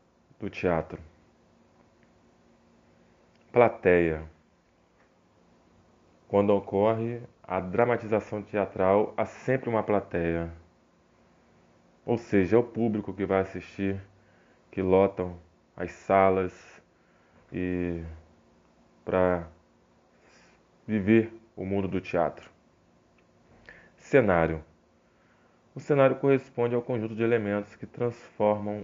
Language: Portuguese